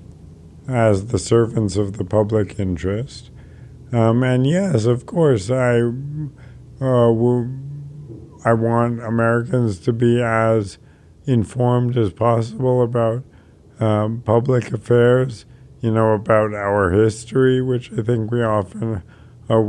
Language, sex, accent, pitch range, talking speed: English, male, American, 110-125 Hz, 115 wpm